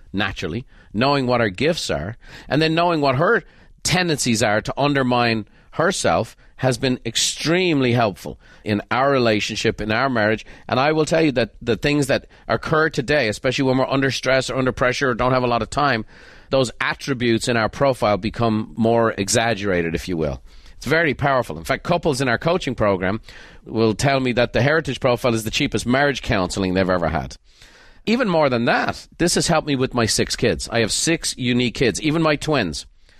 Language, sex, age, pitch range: English, male, 40-59, 110-140 Hz